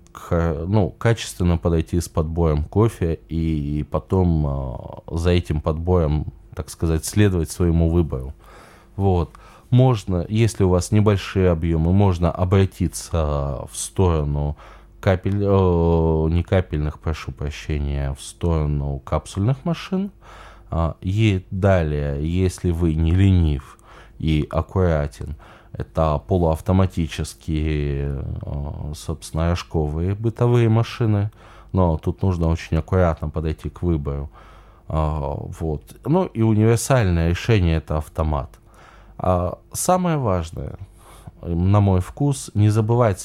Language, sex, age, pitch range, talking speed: Russian, male, 20-39, 80-100 Hz, 105 wpm